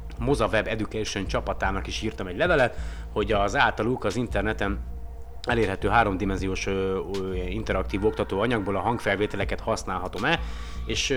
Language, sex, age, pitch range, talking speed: Hungarian, male, 30-49, 90-110 Hz, 120 wpm